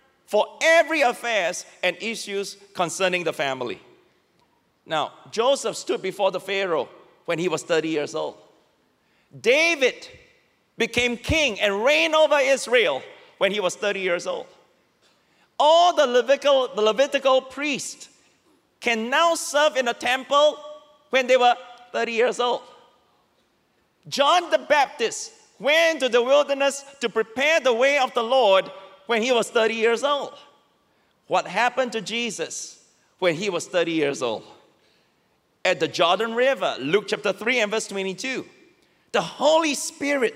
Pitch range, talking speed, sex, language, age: 205-290 Hz, 140 wpm, male, English, 40-59